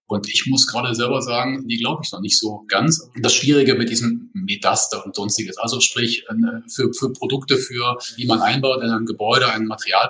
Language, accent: German, German